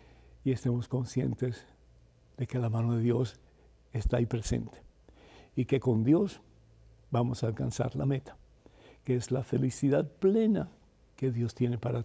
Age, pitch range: 60-79, 115-155 Hz